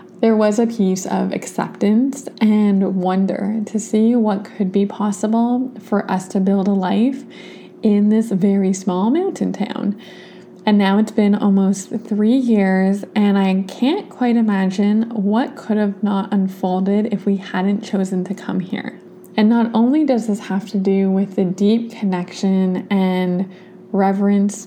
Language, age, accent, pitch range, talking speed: English, 20-39, American, 190-225 Hz, 155 wpm